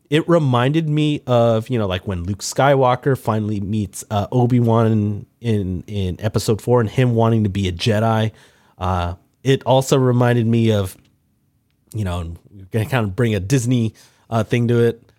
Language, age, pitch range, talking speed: English, 30-49, 100-130 Hz, 175 wpm